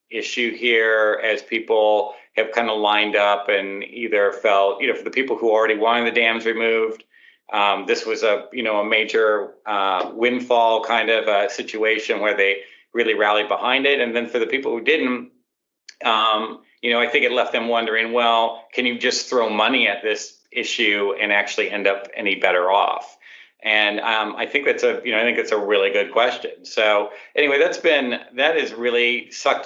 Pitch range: 105-120 Hz